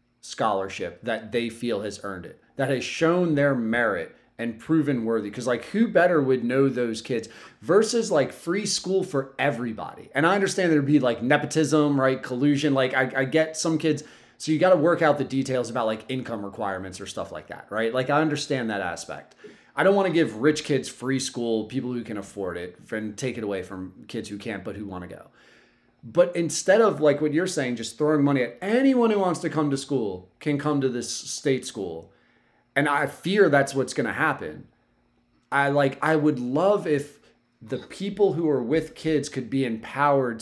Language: English